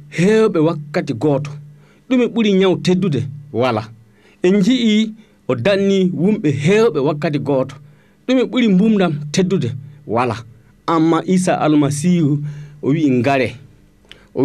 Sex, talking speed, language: male, 110 wpm, English